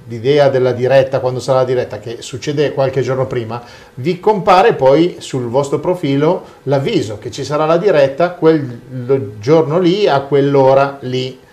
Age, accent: 40-59, native